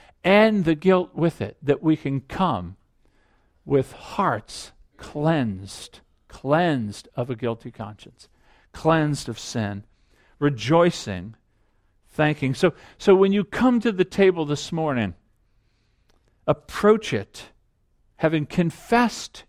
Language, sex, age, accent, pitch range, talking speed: English, male, 50-69, American, 120-175 Hz, 110 wpm